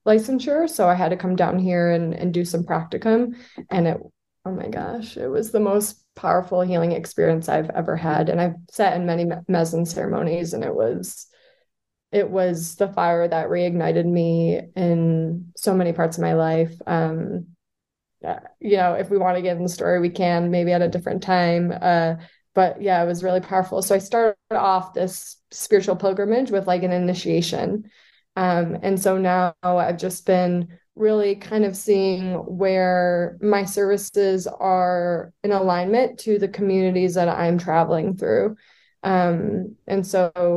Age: 20-39